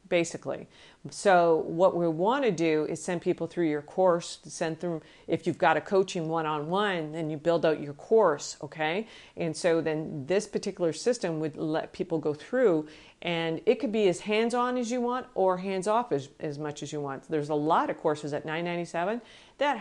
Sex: female